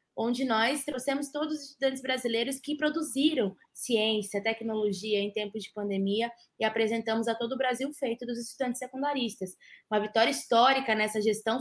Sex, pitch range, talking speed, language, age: female, 230-285 Hz, 155 wpm, Portuguese, 20-39